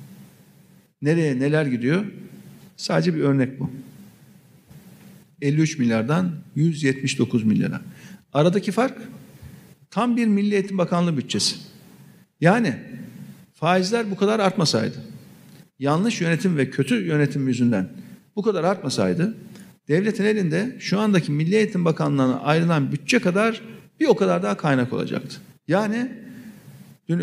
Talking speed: 110 wpm